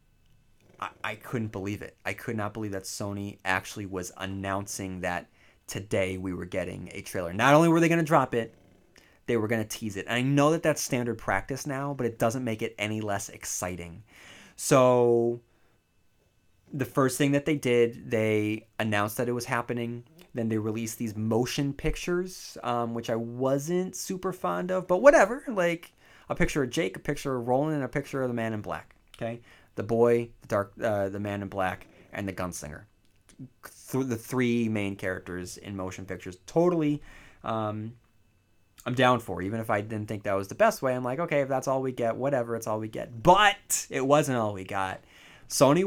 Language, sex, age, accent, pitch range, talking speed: English, male, 20-39, American, 100-135 Hz, 200 wpm